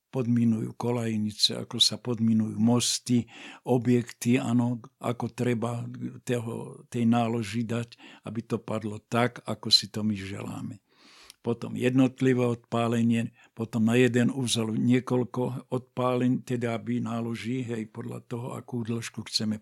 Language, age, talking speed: Slovak, 60-79, 125 wpm